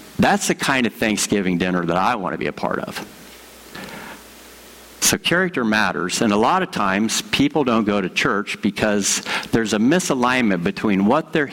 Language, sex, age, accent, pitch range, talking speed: English, male, 50-69, American, 95-125 Hz, 175 wpm